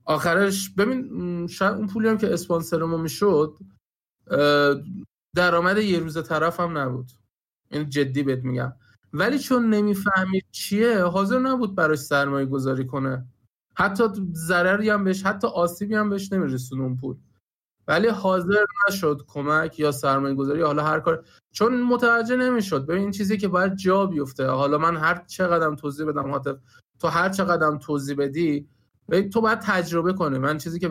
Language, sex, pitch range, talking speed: Persian, male, 140-185 Hz, 150 wpm